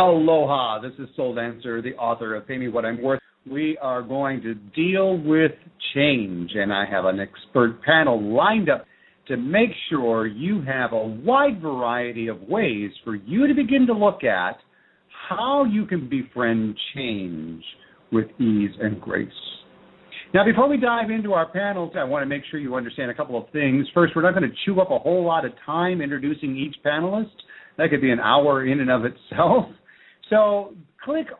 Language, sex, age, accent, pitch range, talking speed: English, male, 50-69, American, 115-180 Hz, 185 wpm